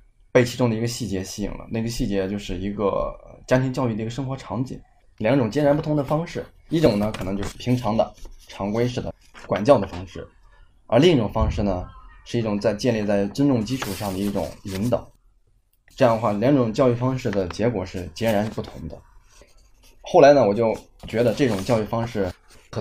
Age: 20-39